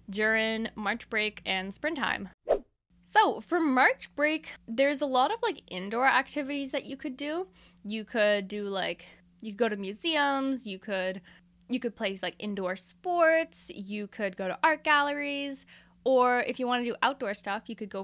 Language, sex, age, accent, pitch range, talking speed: English, female, 10-29, American, 200-260 Hz, 180 wpm